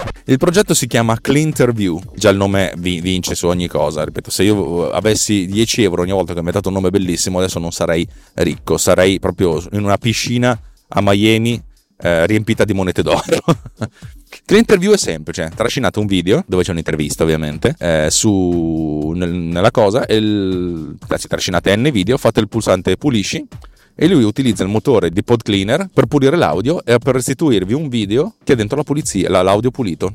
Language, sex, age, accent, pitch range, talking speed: Italian, male, 30-49, native, 85-110 Hz, 180 wpm